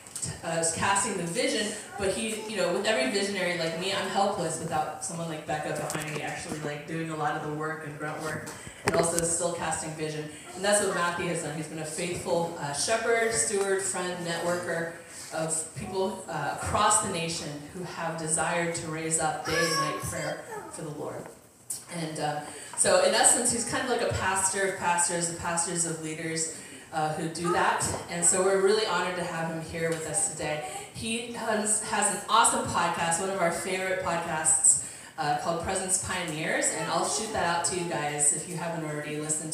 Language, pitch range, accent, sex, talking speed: English, 155-185 Hz, American, female, 200 wpm